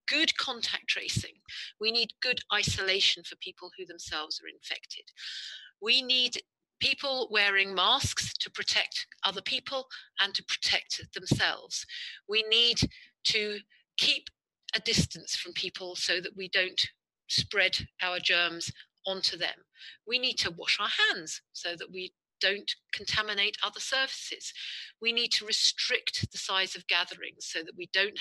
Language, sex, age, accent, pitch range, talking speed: English, female, 40-59, British, 180-240 Hz, 145 wpm